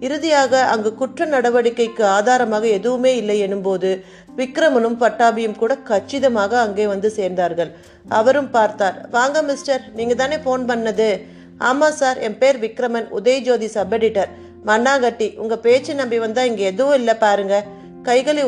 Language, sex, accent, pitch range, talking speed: Tamil, female, native, 205-255 Hz, 135 wpm